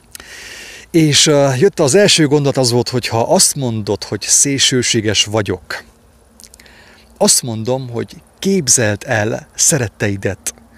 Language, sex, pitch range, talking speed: English, male, 105-150 Hz, 110 wpm